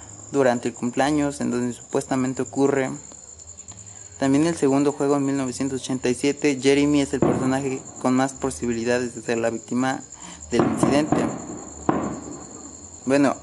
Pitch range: 100-130 Hz